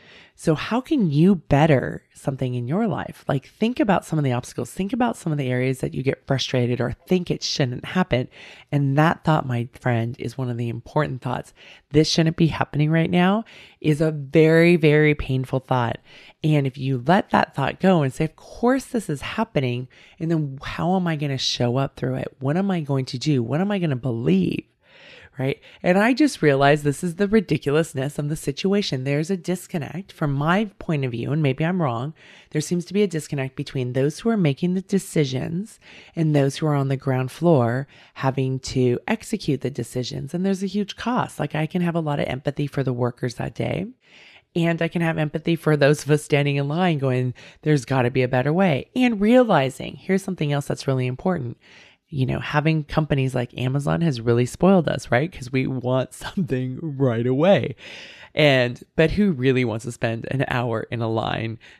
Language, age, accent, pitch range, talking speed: English, 20-39, American, 130-170 Hz, 210 wpm